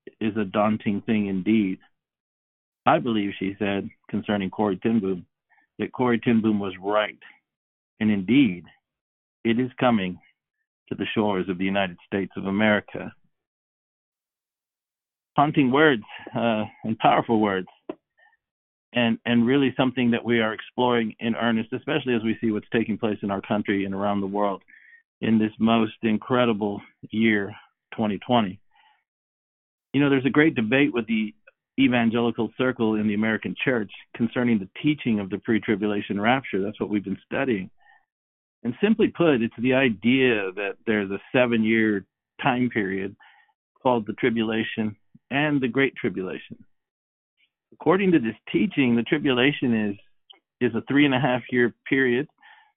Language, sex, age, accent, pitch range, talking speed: English, male, 50-69, American, 105-125 Hz, 140 wpm